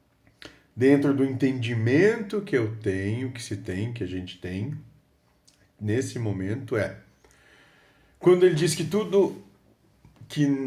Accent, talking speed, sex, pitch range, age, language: Brazilian, 125 wpm, male, 115-160 Hz, 40-59, Portuguese